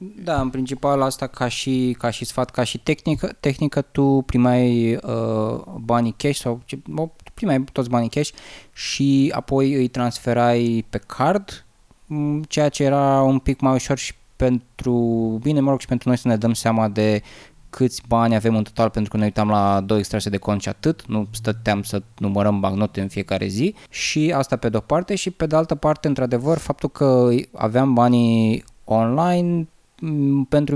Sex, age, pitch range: male, 20-39, 110-140 Hz